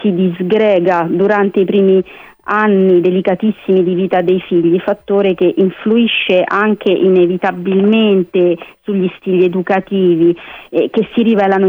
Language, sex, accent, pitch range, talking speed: Italian, female, native, 185-215 Hz, 125 wpm